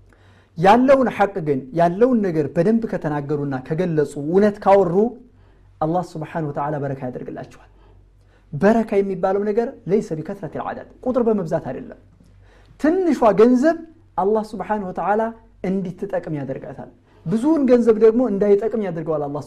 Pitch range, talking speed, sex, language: 140-210 Hz, 120 wpm, male, Amharic